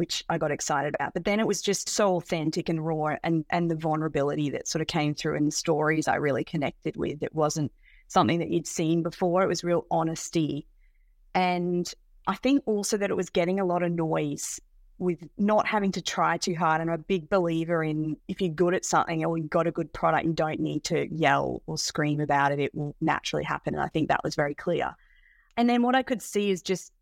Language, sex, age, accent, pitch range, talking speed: English, female, 30-49, Australian, 155-185 Hz, 235 wpm